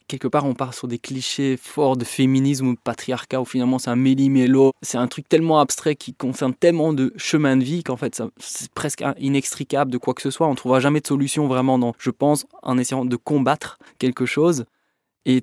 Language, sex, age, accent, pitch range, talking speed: French, male, 20-39, French, 125-145 Hz, 220 wpm